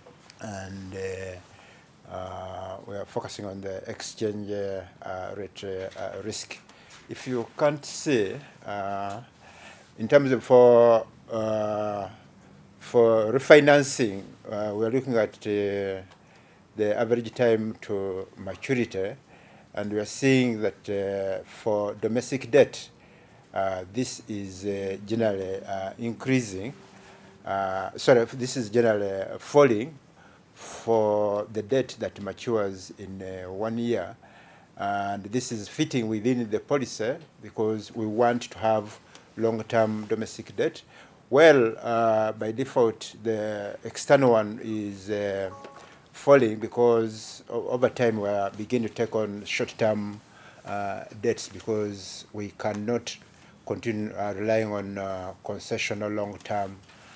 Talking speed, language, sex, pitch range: 120 wpm, English, male, 100-115 Hz